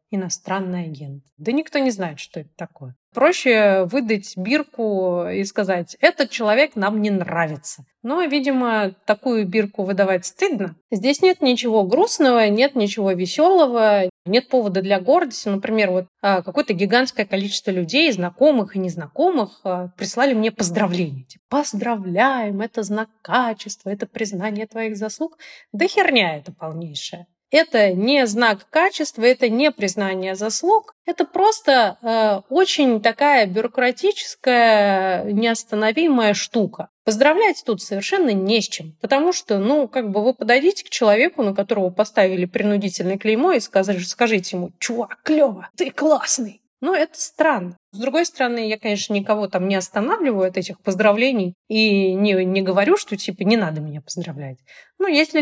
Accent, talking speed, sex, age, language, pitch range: native, 140 wpm, female, 30-49, Russian, 190-265 Hz